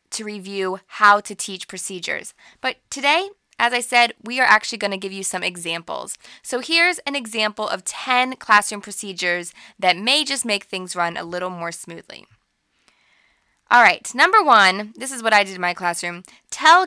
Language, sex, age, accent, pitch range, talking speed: English, female, 20-39, American, 185-255 Hz, 180 wpm